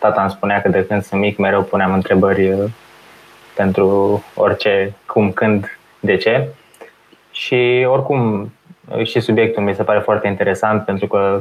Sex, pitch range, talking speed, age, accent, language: male, 105-130 Hz, 145 wpm, 20-39, native, Romanian